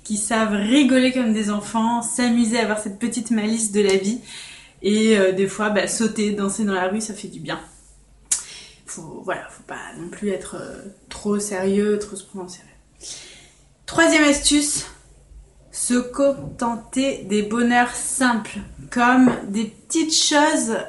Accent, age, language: French, 20-39, French